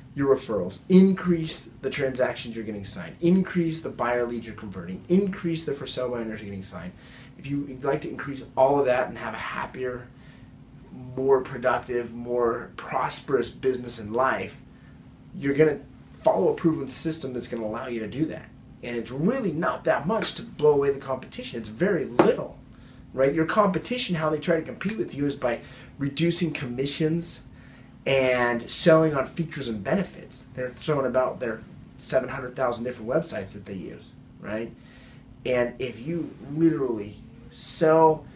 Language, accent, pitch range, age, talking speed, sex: English, American, 120-155 Hz, 30-49, 165 wpm, male